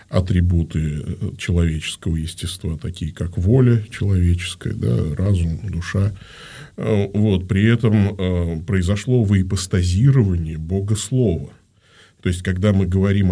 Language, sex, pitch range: Russian, male, 90-120 Hz